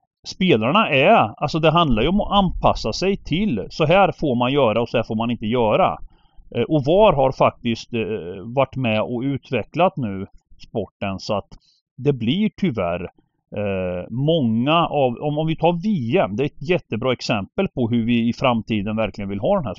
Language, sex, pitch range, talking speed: Swedish, male, 115-160 Hz, 180 wpm